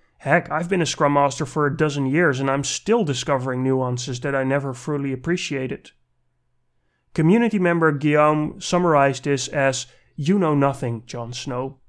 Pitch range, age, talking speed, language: 130-160 Hz, 30-49, 155 wpm, English